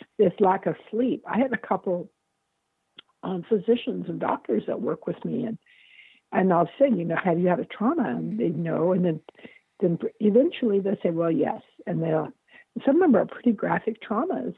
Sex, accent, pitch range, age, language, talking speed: female, American, 185-245 Hz, 60-79, English, 195 wpm